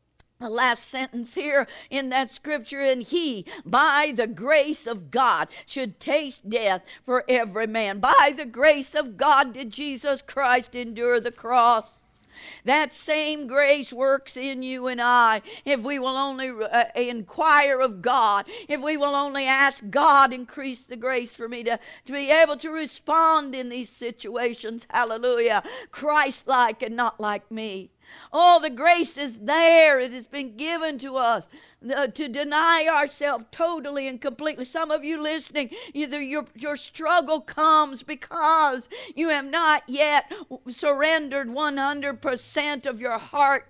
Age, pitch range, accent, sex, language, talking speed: 50-69, 250-305 Hz, American, female, English, 145 wpm